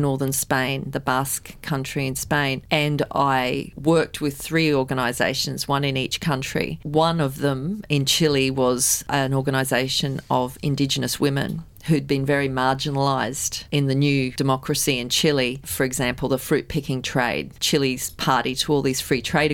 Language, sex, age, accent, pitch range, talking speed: English, female, 40-59, Australian, 130-150 Hz, 155 wpm